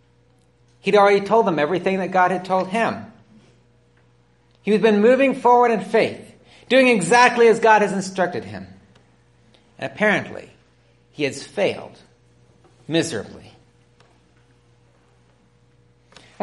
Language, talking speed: English, 115 wpm